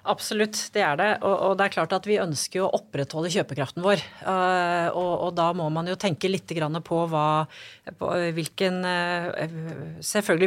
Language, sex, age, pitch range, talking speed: English, female, 30-49, 160-200 Hz, 165 wpm